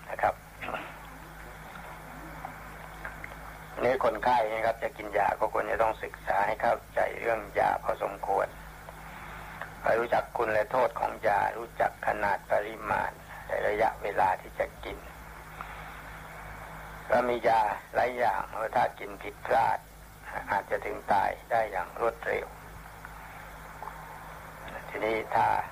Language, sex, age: Thai, male, 60-79